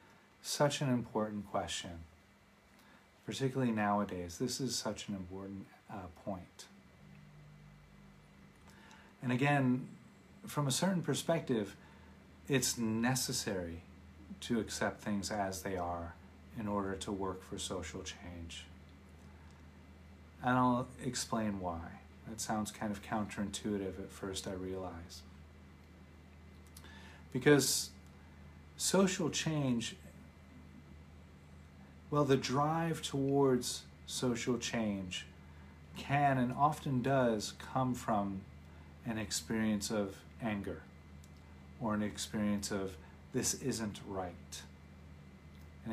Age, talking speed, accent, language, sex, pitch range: 40-59, 95 wpm, American, English, male, 80-110 Hz